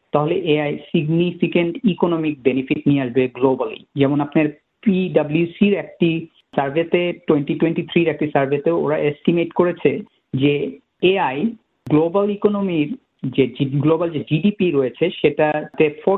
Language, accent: Bengali, native